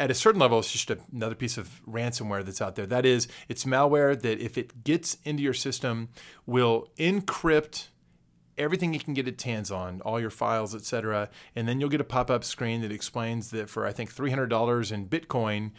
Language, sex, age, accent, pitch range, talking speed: English, male, 30-49, American, 110-140 Hz, 205 wpm